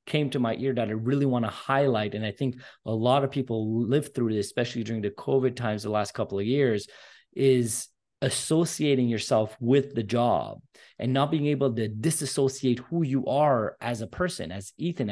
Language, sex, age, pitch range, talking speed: English, male, 30-49, 120-150 Hz, 200 wpm